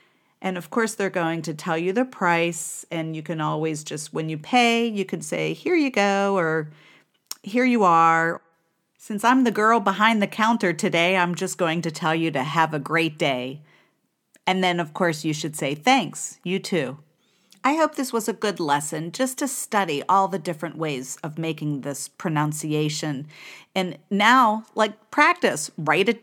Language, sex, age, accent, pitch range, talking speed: English, female, 40-59, American, 150-210 Hz, 185 wpm